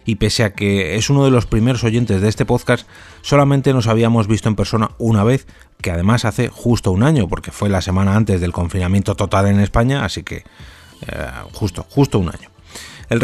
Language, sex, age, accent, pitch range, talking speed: Spanish, male, 30-49, Spanish, 95-120 Hz, 205 wpm